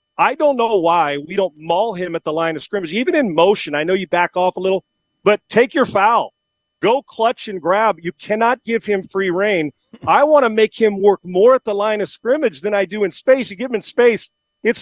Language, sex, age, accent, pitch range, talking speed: English, male, 40-59, American, 175-215 Hz, 240 wpm